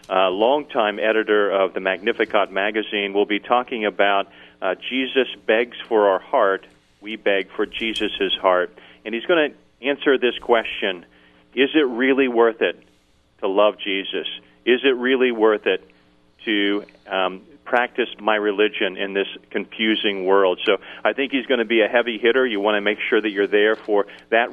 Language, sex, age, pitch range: English, male, 40-59, 95-115 Hz